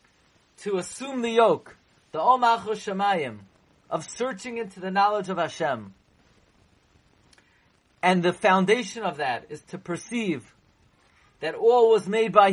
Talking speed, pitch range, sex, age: 130 wpm, 150-205 Hz, male, 40-59